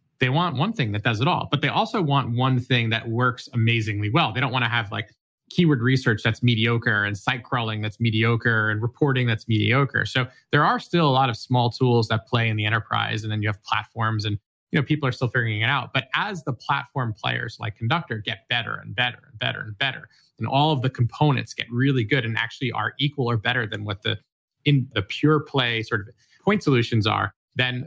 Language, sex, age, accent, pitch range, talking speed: English, male, 20-39, American, 110-135 Hz, 230 wpm